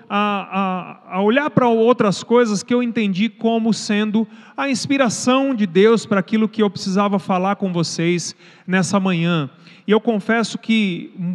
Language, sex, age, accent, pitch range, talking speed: Portuguese, male, 40-59, Brazilian, 190-230 Hz, 155 wpm